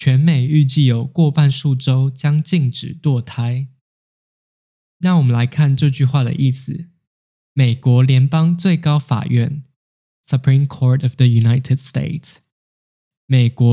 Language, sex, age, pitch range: Chinese, male, 10-29, 125-155 Hz